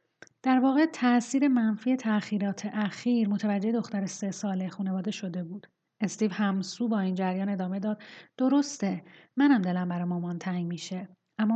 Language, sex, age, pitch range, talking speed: Persian, female, 30-49, 195-225 Hz, 145 wpm